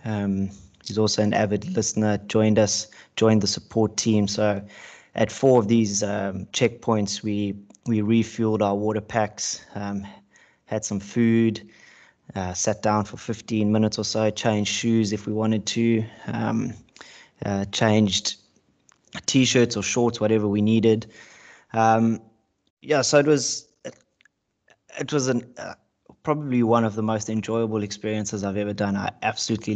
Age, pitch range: 20-39, 105-115 Hz